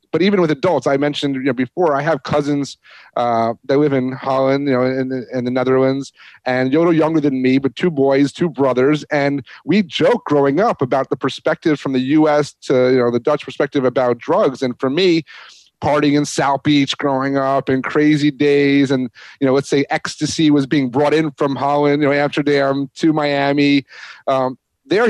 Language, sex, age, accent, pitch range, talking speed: English, male, 30-49, American, 135-160 Hz, 195 wpm